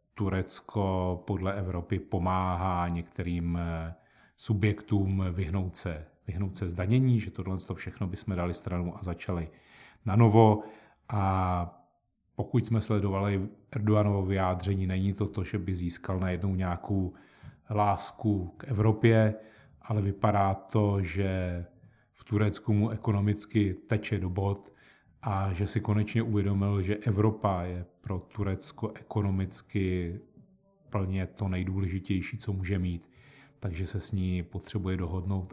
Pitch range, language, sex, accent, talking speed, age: 95-110 Hz, Czech, male, native, 120 wpm, 30-49